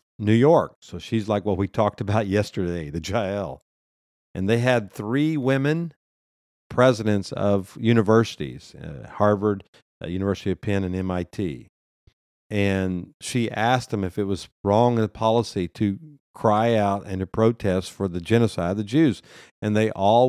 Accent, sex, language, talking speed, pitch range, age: American, male, English, 160 wpm, 95-120 Hz, 50-69